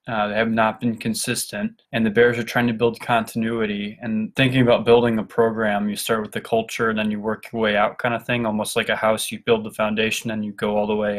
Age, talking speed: 20-39, 265 wpm